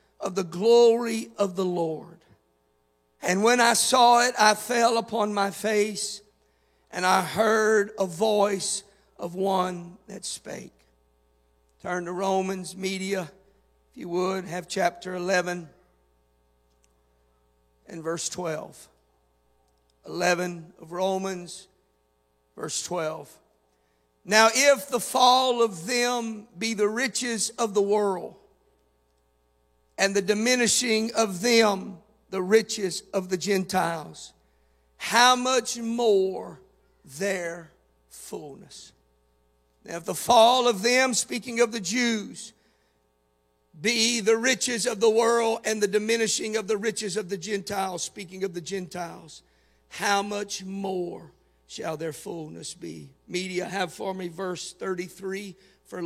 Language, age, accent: English, 50-69, American